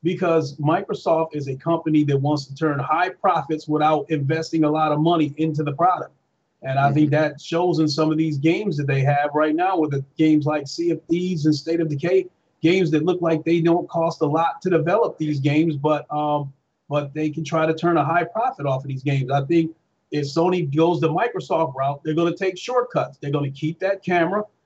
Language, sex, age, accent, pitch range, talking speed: English, male, 40-59, American, 150-175 Hz, 225 wpm